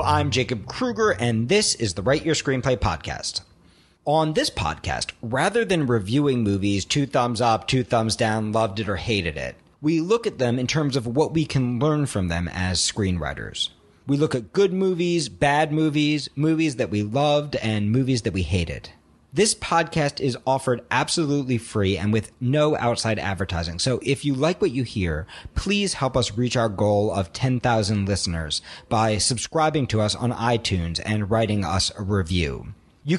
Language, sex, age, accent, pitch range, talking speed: English, male, 40-59, American, 100-145 Hz, 180 wpm